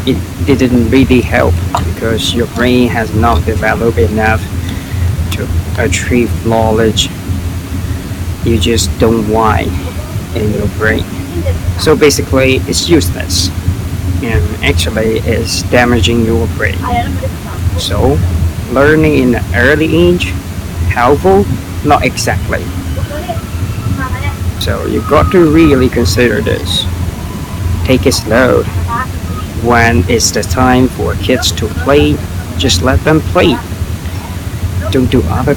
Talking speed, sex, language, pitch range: 110 wpm, male, English, 90-115 Hz